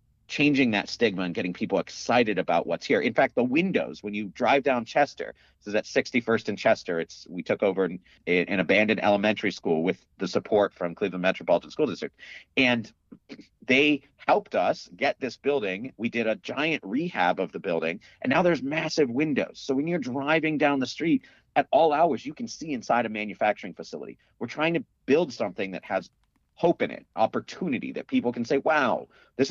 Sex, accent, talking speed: male, American, 195 wpm